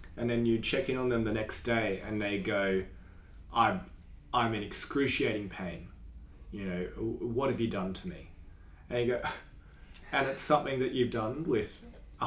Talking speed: 180 wpm